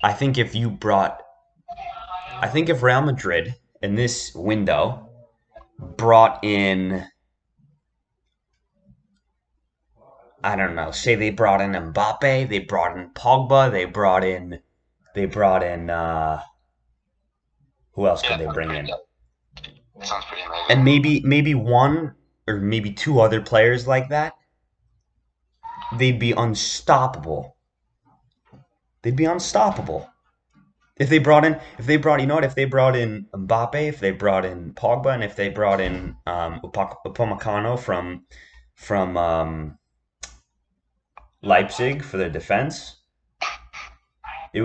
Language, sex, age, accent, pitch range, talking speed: English, male, 30-49, American, 90-125 Hz, 125 wpm